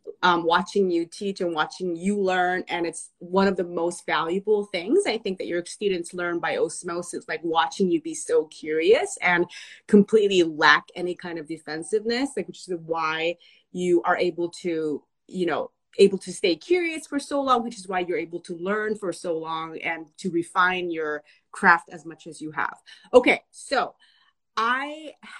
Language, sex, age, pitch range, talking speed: English, female, 30-49, 180-275 Hz, 180 wpm